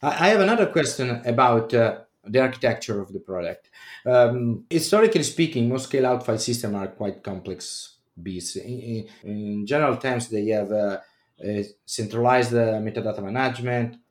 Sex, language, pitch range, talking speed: male, English, 105-130 Hz, 135 wpm